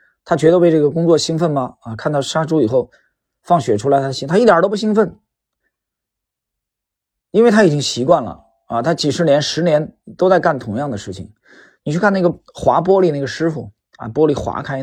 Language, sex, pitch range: Chinese, male, 115-165 Hz